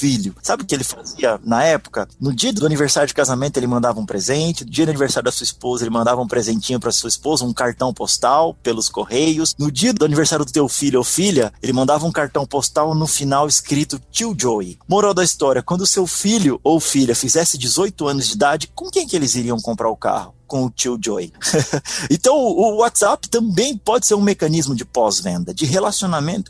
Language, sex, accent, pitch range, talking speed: Portuguese, male, Brazilian, 130-190 Hz, 210 wpm